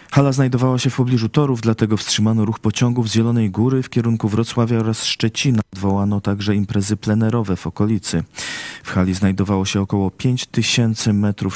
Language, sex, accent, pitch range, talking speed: Polish, male, native, 100-120 Hz, 160 wpm